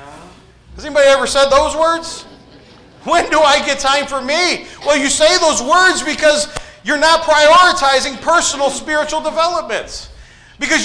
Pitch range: 250-300 Hz